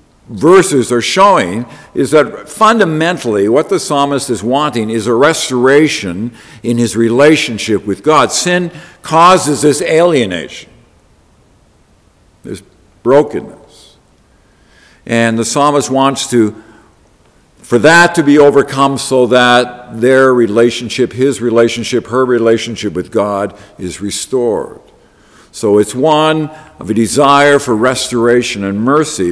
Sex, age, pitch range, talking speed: male, 50-69, 115-145 Hz, 115 wpm